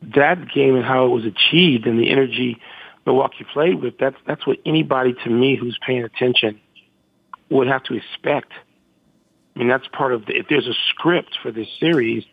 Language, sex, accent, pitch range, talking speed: English, male, American, 125-155 Hz, 185 wpm